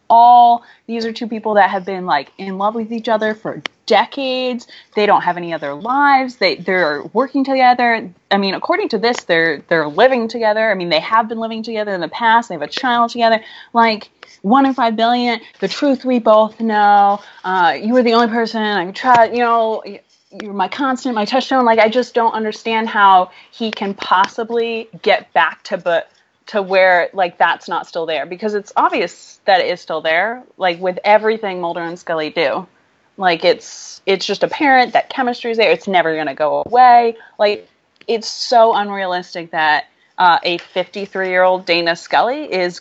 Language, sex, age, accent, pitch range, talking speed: English, female, 20-39, American, 180-235 Hz, 190 wpm